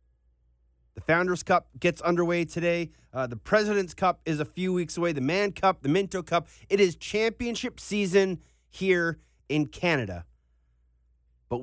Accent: American